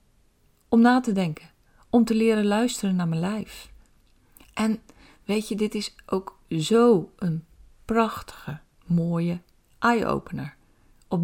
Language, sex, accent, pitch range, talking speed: Dutch, female, Dutch, 170-220 Hz, 125 wpm